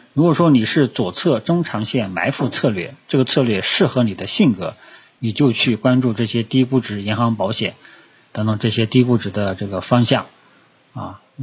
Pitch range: 110-140 Hz